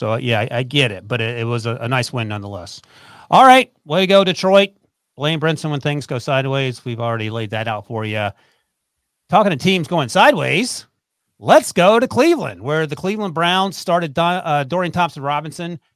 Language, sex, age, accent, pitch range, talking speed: English, male, 40-59, American, 120-165 Hz, 175 wpm